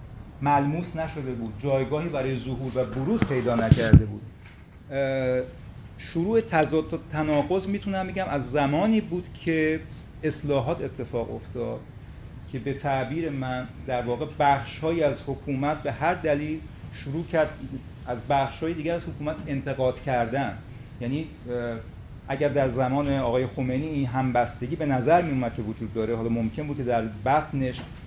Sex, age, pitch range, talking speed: male, 40-59, 125-150 Hz, 140 wpm